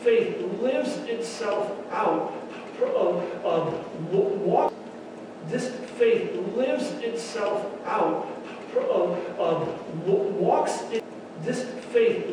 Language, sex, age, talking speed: English, male, 40-59, 105 wpm